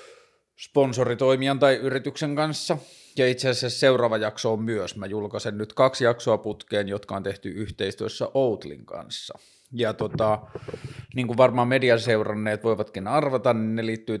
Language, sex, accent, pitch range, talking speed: Finnish, male, native, 105-130 Hz, 145 wpm